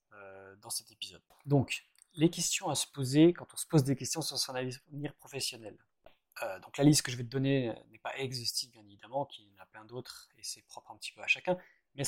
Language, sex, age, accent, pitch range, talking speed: French, male, 20-39, French, 115-145 Hz, 240 wpm